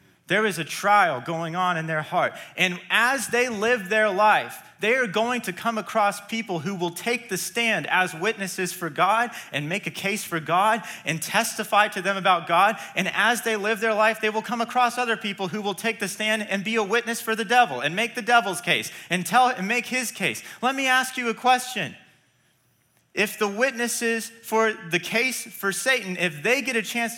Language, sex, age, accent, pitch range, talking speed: English, male, 30-49, American, 180-235 Hz, 215 wpm